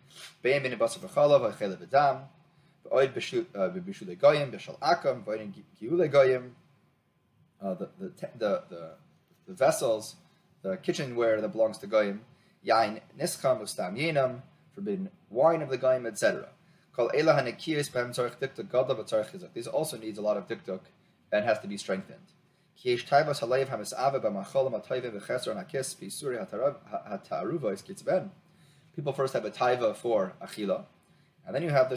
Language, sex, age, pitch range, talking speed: English, male, 30-49, 125-175 Hz, 60 wpm